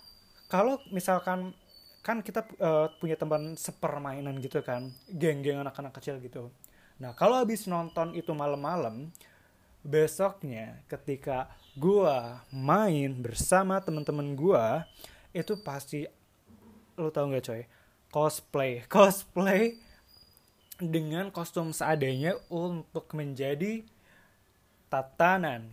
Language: Indonesian